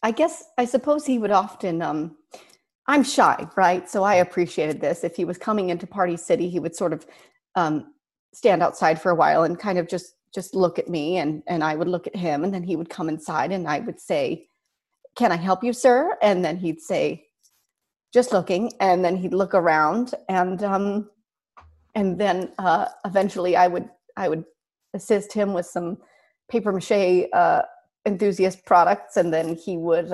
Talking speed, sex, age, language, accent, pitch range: 190 wpm, female, 30-49, English, American, 165-210 Hz